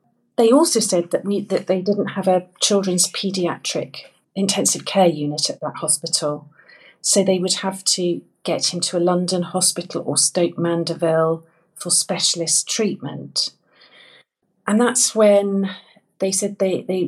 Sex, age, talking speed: female, 40-59, 145 wpm